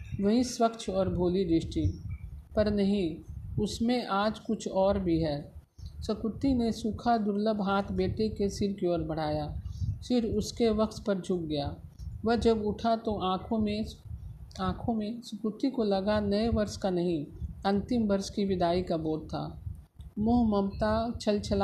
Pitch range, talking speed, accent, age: 170-215 Hz, 155 wpm, native, 50-69